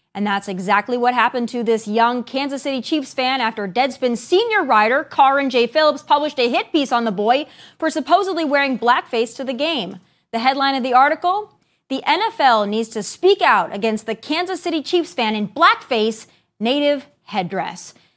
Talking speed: 180 wpm